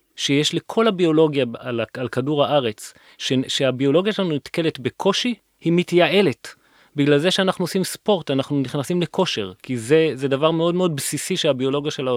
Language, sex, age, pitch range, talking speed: Hebrew, male, 30-49, 130-180 Hz, 140 wpm